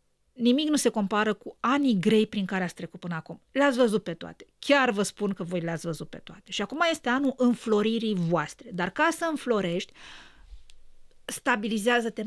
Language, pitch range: Romanian, 195-255 Hz